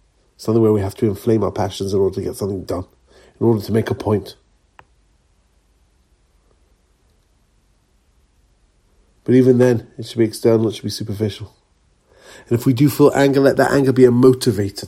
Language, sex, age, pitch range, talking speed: English, male, 50-69, 95-120 Hz, 180 wpm